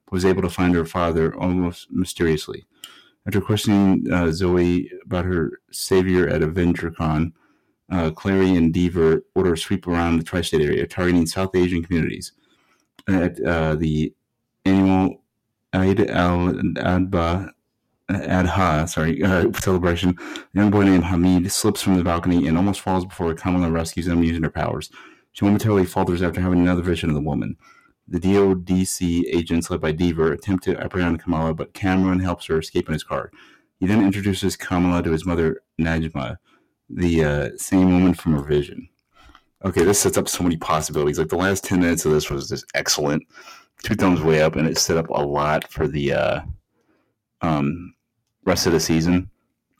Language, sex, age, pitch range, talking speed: English, male, 30-49, 80-95 Hz, 165 wpm